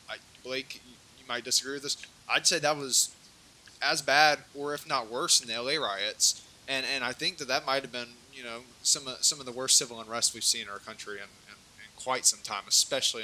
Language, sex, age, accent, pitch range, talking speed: English, male, 20-39, American, 110-130 Hz, 230 wpm